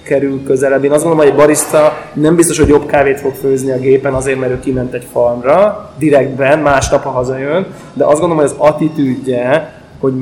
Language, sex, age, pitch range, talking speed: Hungarian, male, 20-39, 130-145 Hz, 200 wpm